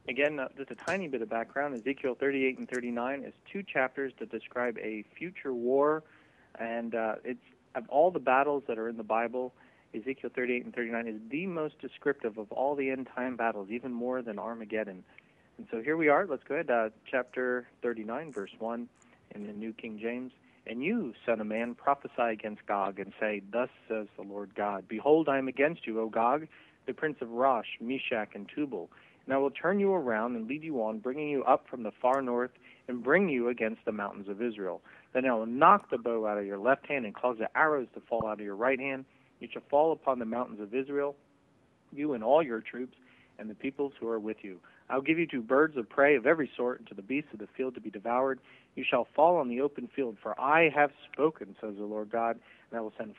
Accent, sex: American, male